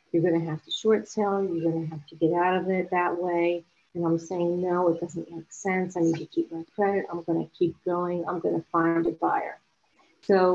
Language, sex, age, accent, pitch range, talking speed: English, female, 50-69, American, 170-195 Hz, 250 wpm